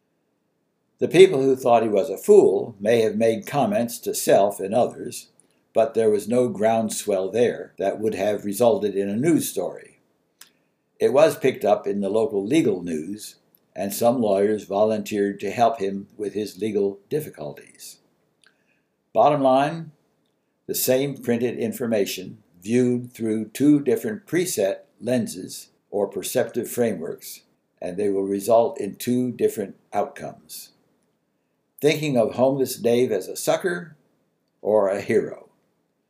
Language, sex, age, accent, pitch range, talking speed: English, male, 60-79, American, 105-150 Hz, 140 wpm